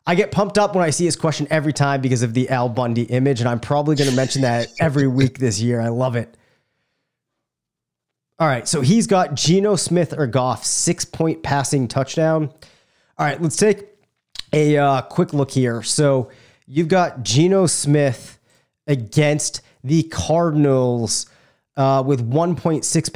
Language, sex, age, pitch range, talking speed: English, male, 30-49, 125-155 Hz, 165 wpm